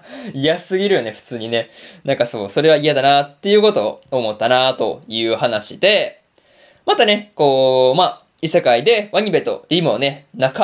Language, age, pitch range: Japanese, 20-39, 140-200 Hz